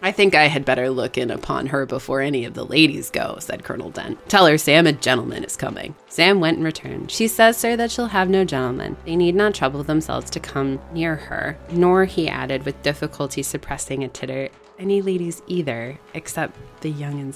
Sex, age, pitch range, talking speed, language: female, 20-39, 135-185 Hz, 210 wpm, English